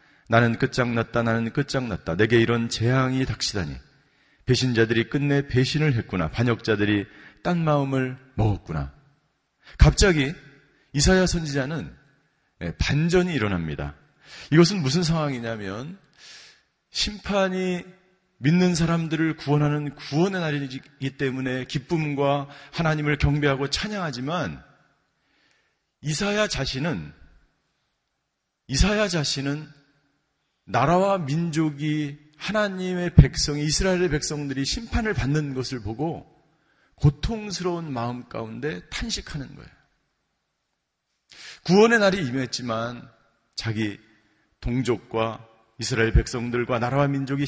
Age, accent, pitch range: 40-59, native, 125-165 Hz